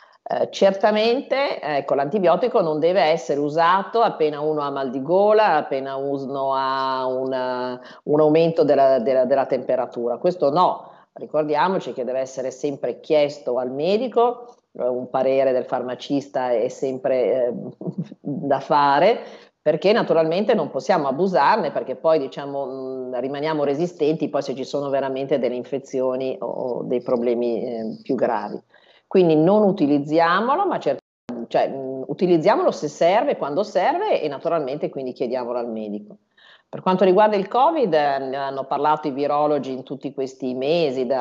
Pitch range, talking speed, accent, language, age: 130-155 Hz, 140 wpm, native, Italian, 40-59